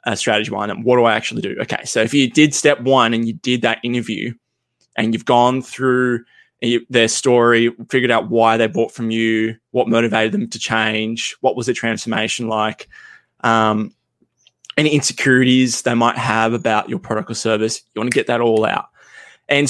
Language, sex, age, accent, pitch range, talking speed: English, male, 20-39, Australian, 115-135 Hz, 195 wpm